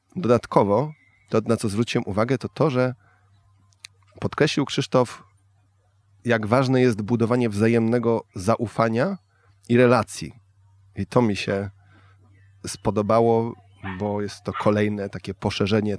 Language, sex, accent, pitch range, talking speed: Polish, male, native, 100-115 Hz, 115 wpm